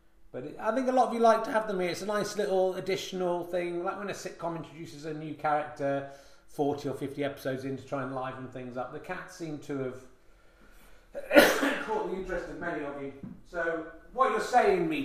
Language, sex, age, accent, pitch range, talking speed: English, male, 30-49, British, 165-220 Hz, 215 wpm